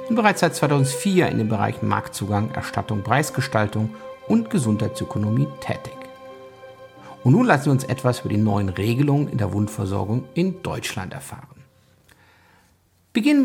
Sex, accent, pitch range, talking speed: male, German, 110-145 Hz, 135 wpm